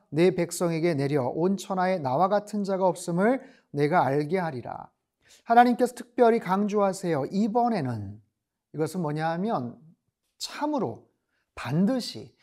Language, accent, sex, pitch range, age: Korean, native, male, 170-210 Hz, 40-59